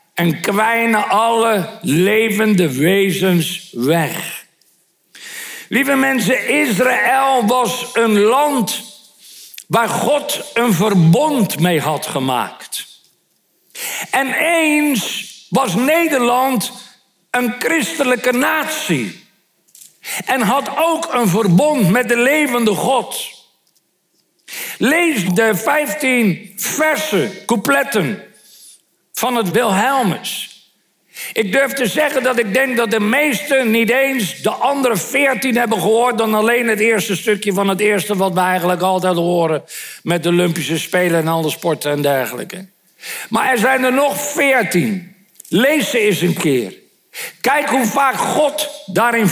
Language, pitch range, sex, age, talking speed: Dutch, 195-270 Hz, male, 60-79, 120 wpm